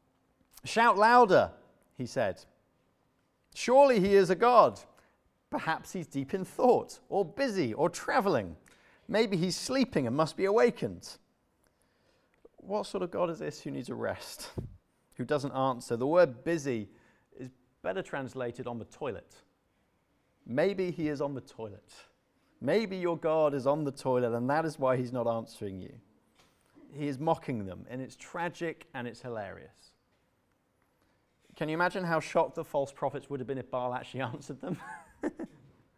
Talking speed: 155 wpm